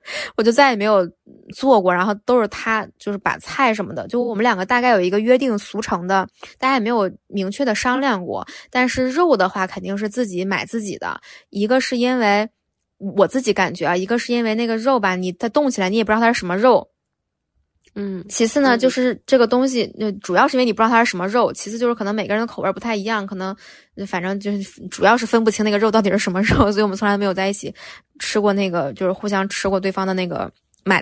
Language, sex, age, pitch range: Chinese, female, 20-39, 195-235 Hz